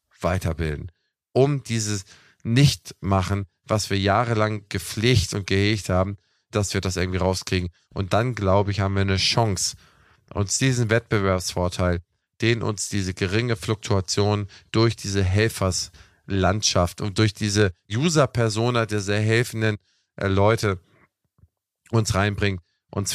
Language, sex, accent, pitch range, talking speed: German, male, German, 95-110 Hz, 120 wpm